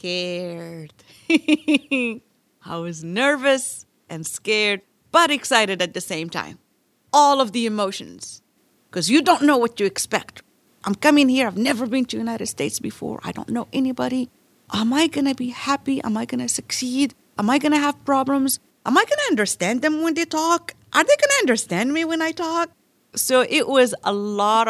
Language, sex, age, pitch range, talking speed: English, female, 40-59, 195-275 Hz, 190 wpm